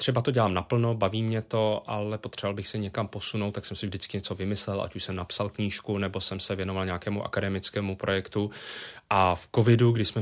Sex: male